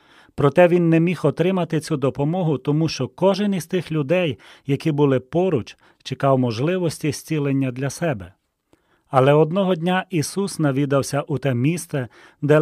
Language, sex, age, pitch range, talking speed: Ukrainian, male, 40-59, 130-170 Hz, 145 wpm